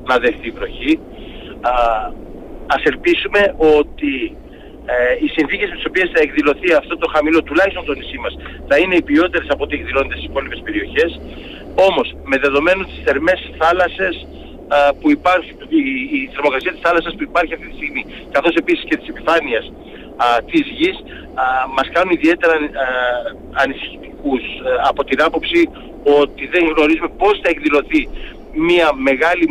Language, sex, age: Greek, male, 60-79